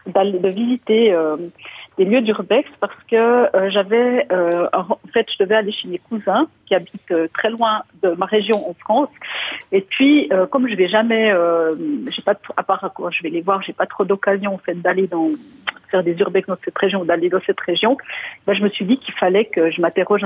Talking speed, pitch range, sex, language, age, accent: 230 wpm, 180-220 Hz, female, French, 40-59, French